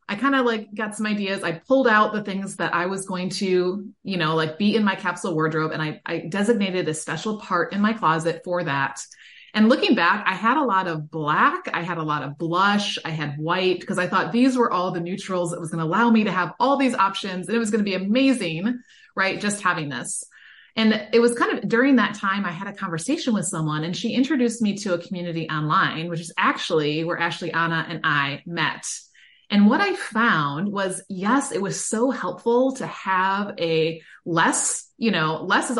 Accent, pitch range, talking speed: American, 165-215 Hz, 225 wpm